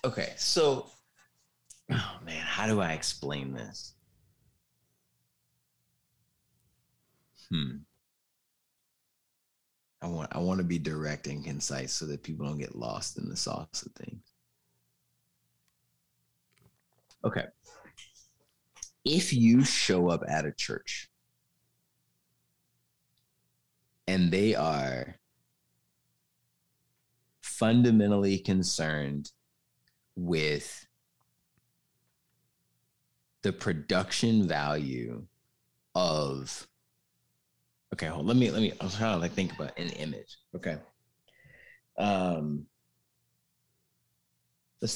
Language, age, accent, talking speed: English, 30-49, American, 85 wpm